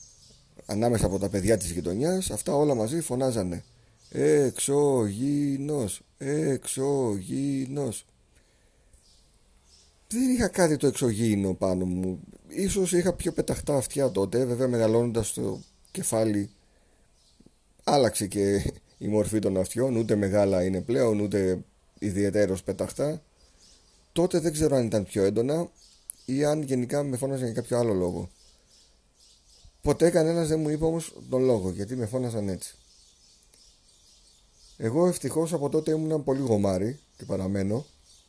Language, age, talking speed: Greek, 30-49, 125 wpm